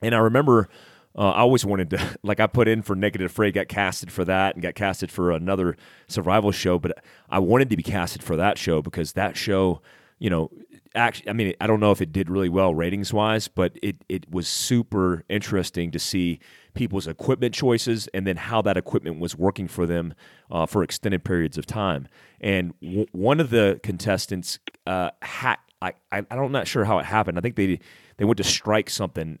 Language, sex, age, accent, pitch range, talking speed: English, male, 30-49, American, 90-110 Hz, 215 wpm